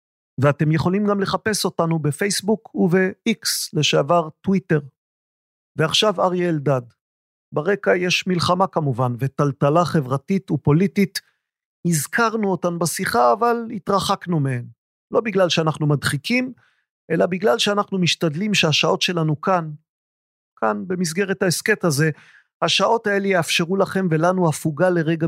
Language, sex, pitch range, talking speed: Hebrew, male, 145-185 Hz, 110 wpm